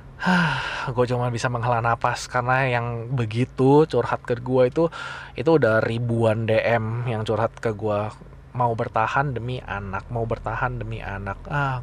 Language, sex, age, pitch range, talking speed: Indonesian, male, 20-39, 115-140 Hz, 150 wpm